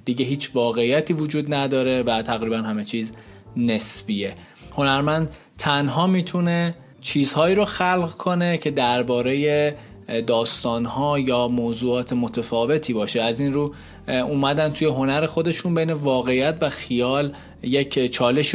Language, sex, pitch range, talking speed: Persian, male, 115-150 Hz, 120 wpm